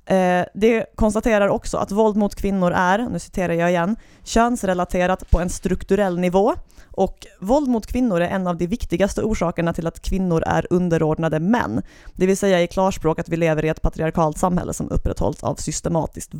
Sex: female